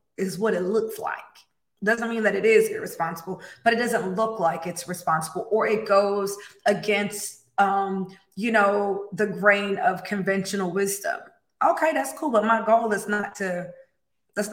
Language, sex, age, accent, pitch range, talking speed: English, female, 20-39, American, 185-225 Hz, 165 wpm